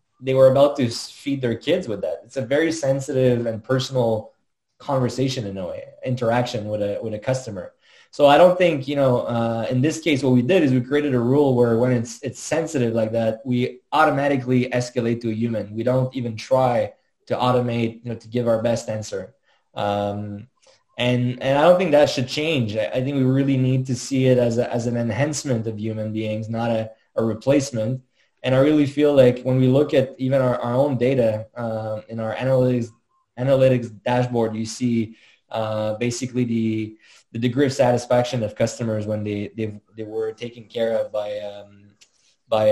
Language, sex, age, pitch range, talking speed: English, male, 20-39, 115-135 Hz, 195 wpm